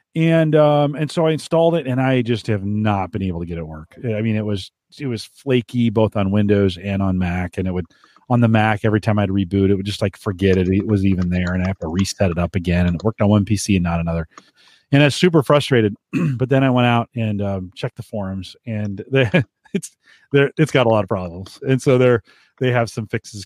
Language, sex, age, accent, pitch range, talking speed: English, male, 40-59, American, 95-130 Hz, 255 wpm